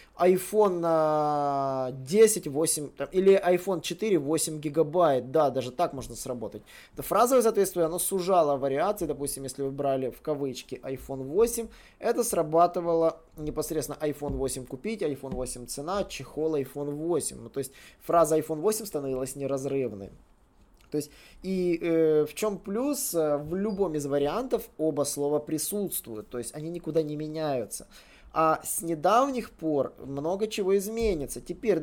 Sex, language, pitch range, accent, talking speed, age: male, Russian, 140-195 Hz, native, 140 wpm, 20-39